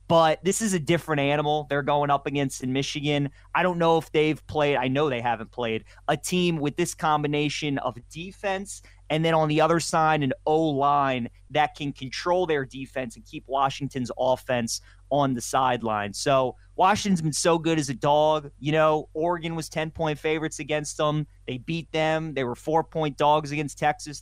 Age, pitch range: 30-49, 130-160 Hz